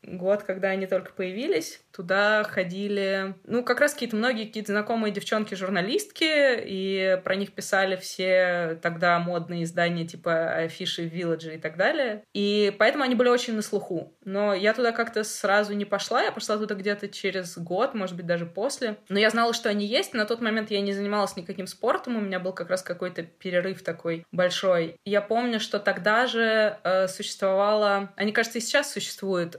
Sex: female